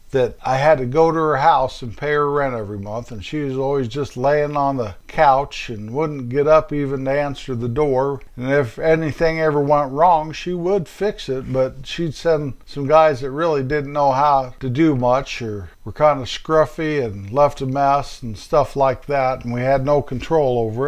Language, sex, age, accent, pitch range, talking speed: English, male, 50-69, American, 125-150 Hz, 215 wpm